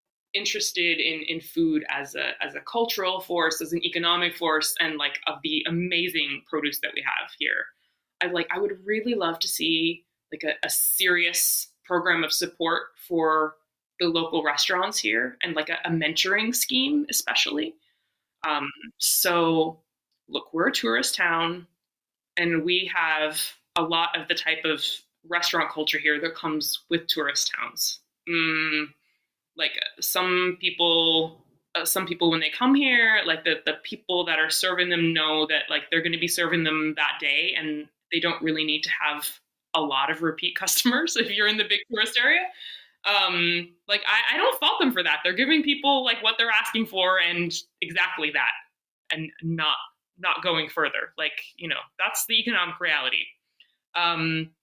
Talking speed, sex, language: 170 wpm, female, English